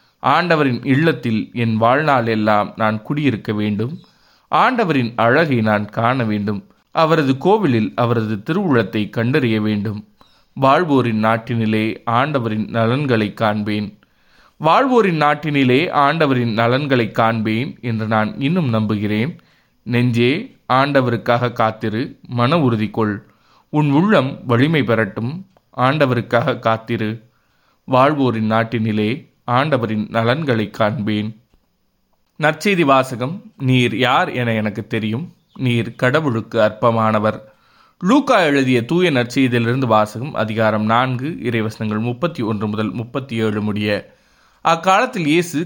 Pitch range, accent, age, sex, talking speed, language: 110-135 Hz, native, 30-49, male, 90 wpm, Tamil